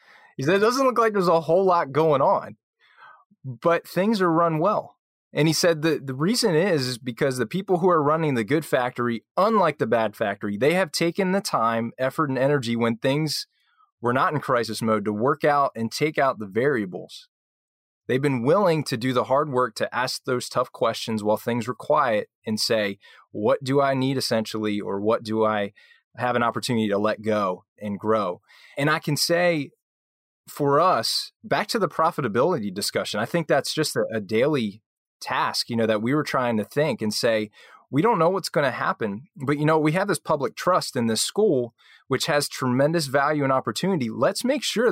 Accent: American